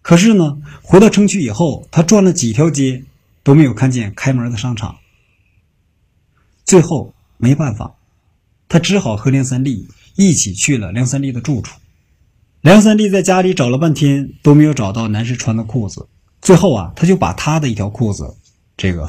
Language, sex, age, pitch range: Chinese, male, 50-69, 100-145 Hz